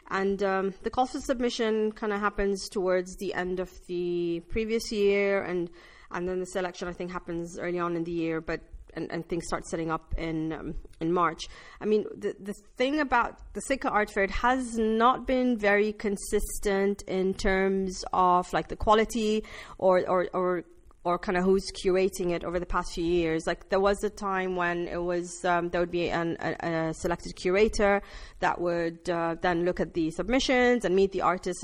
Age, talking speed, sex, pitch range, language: 30-49, 200 wpm, female, 175-215 Hz, English